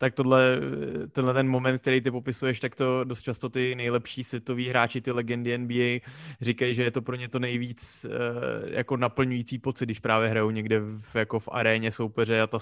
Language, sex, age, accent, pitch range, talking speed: Czech, male, 20-39, native, 115-125 Hz, 195 wpm